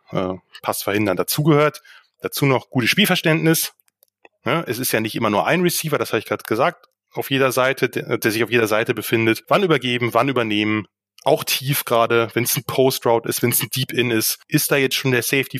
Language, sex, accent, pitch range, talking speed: German, male, German, 120-155 Hz, 205 wpm